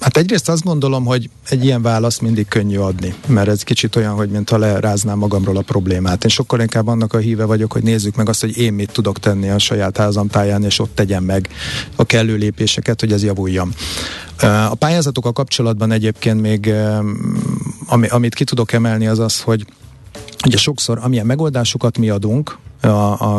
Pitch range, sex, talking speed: 100-115 Hz, male, 180 wpm